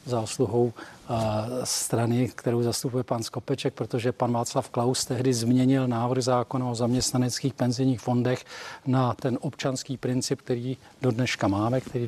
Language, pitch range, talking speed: Czech, 130-155 Hz, 135 wpm